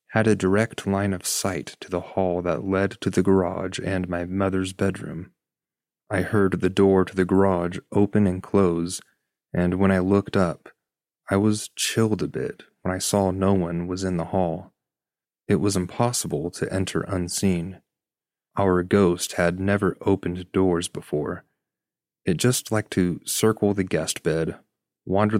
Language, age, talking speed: English, 30-49, 165 wpm